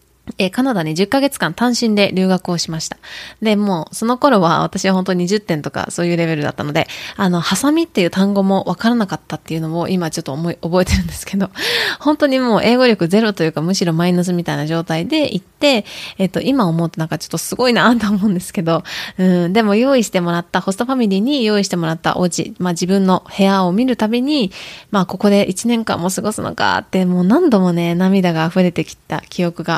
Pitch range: 170-215 Hz